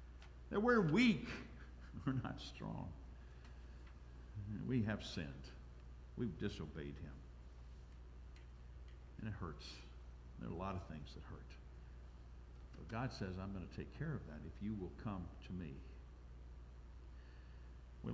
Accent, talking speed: American, 130 wpm